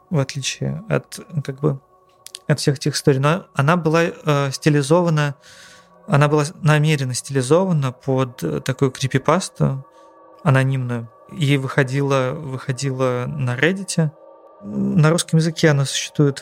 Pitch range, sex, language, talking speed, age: 130-175 Hz, male, Russian, 115 wpm, 20-39